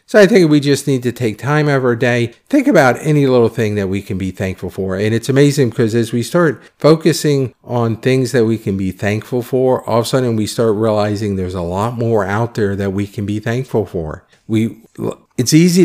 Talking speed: 225 wpm